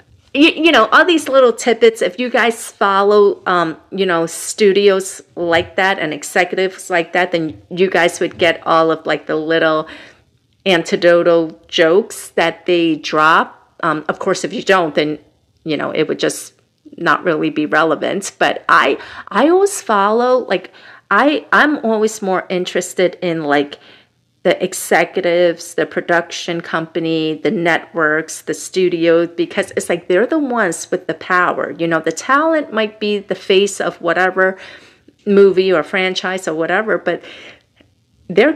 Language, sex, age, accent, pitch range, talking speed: English, female, 40-59, American, 165-200 Hz, 155 wpm